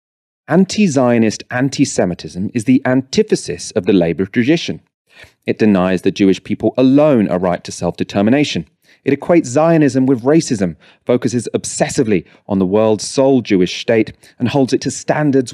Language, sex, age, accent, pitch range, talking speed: English, male, 30-49, British, 95-130 Hz, 145 wpm